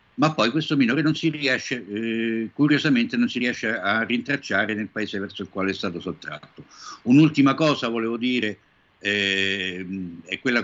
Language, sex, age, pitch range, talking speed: Italian, male, 60-79, 105-140 Hz, 165 wpm